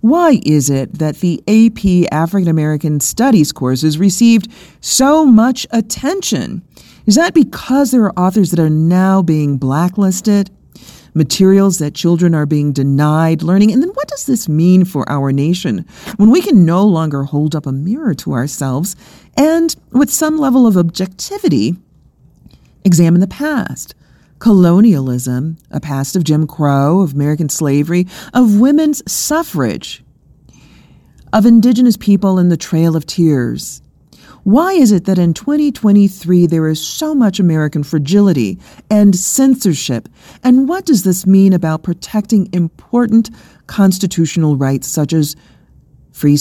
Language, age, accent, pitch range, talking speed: English, 40-59, American, 155-225 Hz, 140 wpm